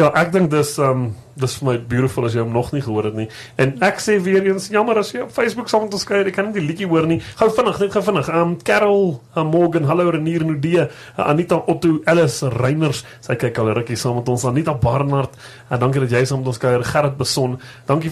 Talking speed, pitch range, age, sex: 260 wpm, 115-165 Hz, 30-49, male